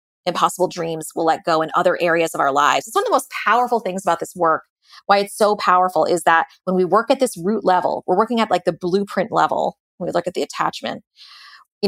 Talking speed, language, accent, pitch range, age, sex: 245 wpm, English, American, 165-200 Hz, 20-39, female